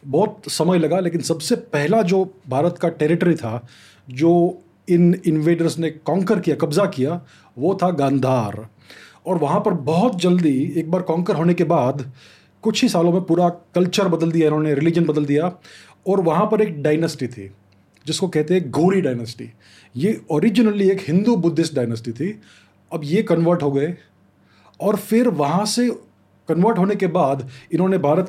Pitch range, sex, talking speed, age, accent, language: 140-185 Hz, male, 165 wpm, 30-49, native, Hindi